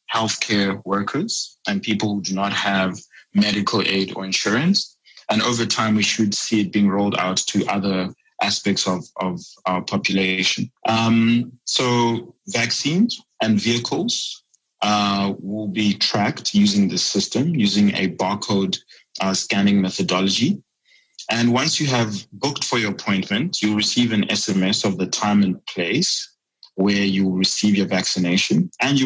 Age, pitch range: 20-39, 100-115 Hz